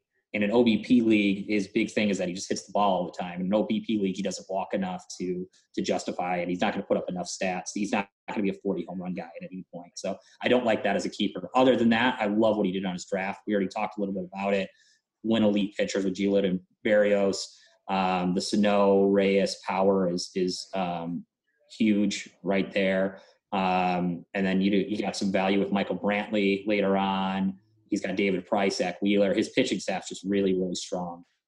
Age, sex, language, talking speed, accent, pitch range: 20-39, male, English, 235 wpm, American, 95-105 Hz